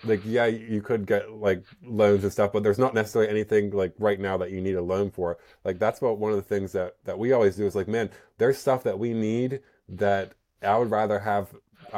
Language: English